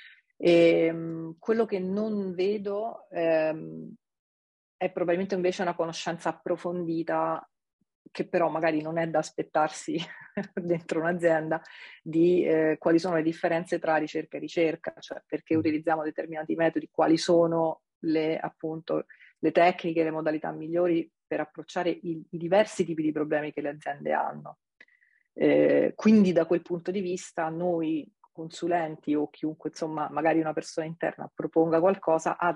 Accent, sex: native, female